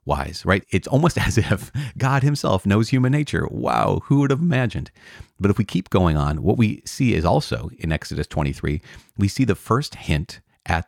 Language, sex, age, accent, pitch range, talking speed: English, male, 30-49, American, 75-105 Hz, 195 wpm